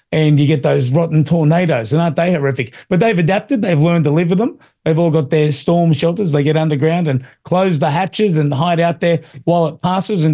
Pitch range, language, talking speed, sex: 155-185 Hz, English, 230 wpm, male